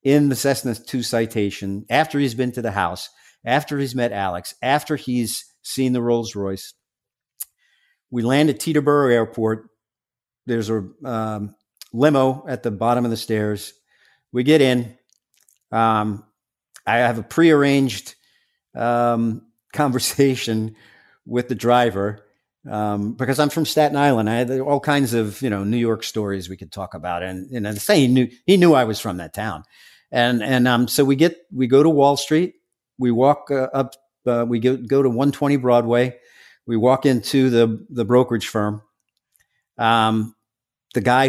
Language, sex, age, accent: English, male, 50-69, American